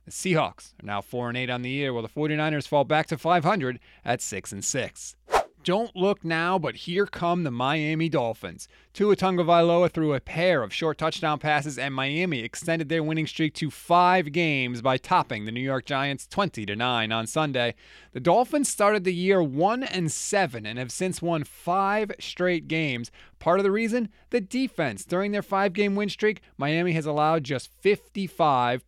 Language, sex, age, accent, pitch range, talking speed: English, male, 30-49, American, 140-190 Hz, 170 wpm